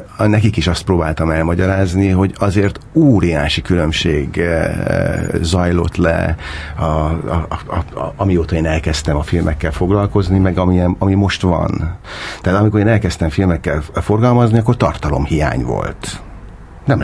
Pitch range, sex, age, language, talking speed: 80-100 Hz, male, 60-79, Hungarian, 130 wpm